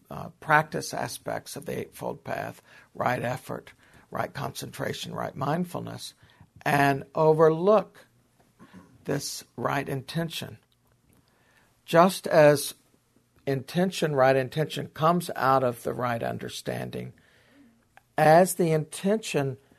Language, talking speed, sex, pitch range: English, 95 wpm, male, 130-165 Hz